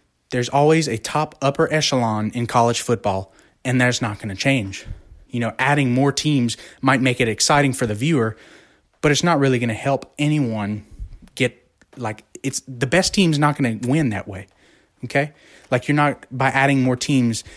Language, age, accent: English, 20-39, American